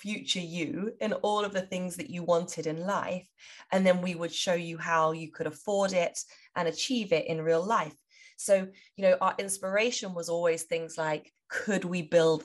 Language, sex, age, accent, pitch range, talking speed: English, female, 20-39, British, 160-195 Hz, 200 wpm